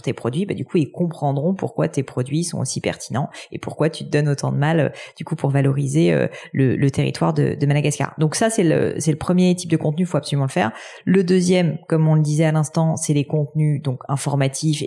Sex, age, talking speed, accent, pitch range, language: female, 30-49, 240 wpm, French, 145-170 Hz, French